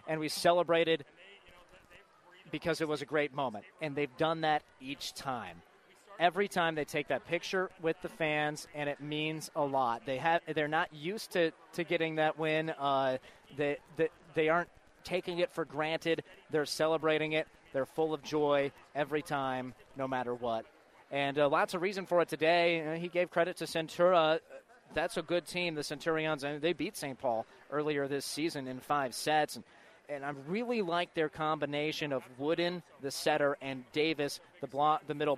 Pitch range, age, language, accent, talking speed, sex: 145-165 Hz, 30-49, English, American, 190 wpm, male